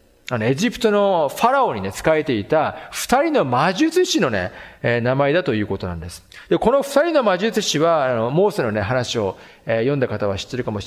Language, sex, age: Japanese, male, 40-59